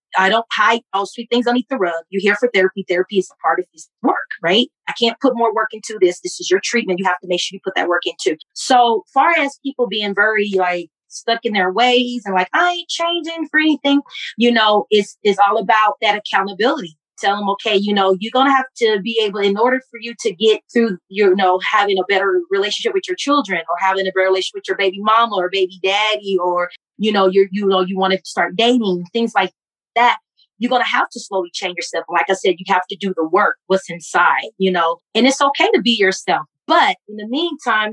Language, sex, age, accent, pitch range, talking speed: English, female, 30-49, American, 190-240 Hz, 245 wpm